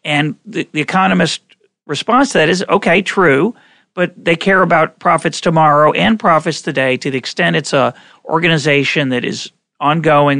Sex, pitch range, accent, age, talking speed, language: male, 145-195 Hz, American, 40-59, 160 wpm, English